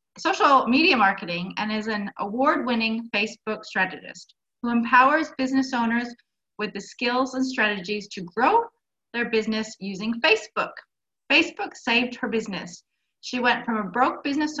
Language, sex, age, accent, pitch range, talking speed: English, female, 30-49, American, 205-260 Hz, 145 wpm